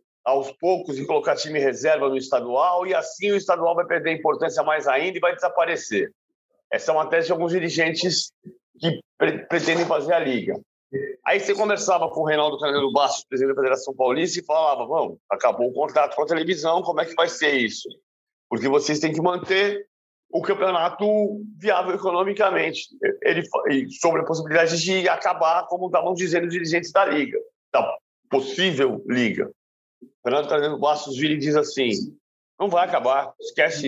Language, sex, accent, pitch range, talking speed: Portuguese, male, Brazilian, 160-205 Hz, 170 wpm